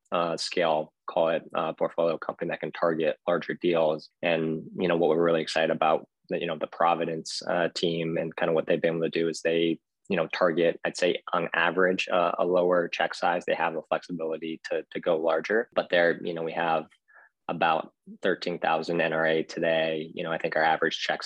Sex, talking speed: male, 210 wpm